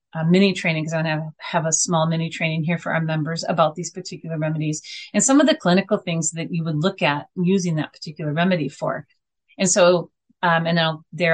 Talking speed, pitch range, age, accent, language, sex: 210 wpm, 155-185 Hz, 30-49, American, English, female